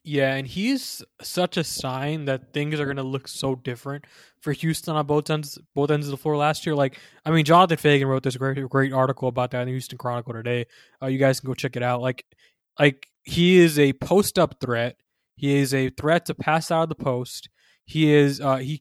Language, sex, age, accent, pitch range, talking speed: English, male, 20-39, American, 130-155 Hz, 235 wpm